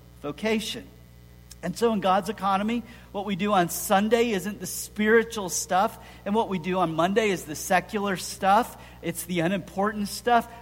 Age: 50-69